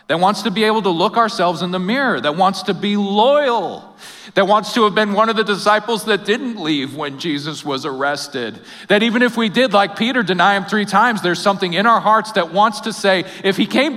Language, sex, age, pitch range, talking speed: English, male, 40-59, 205-280 Hz, 235 wpm